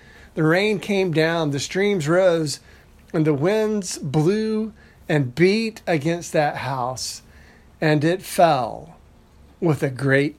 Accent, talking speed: American, 125 wpm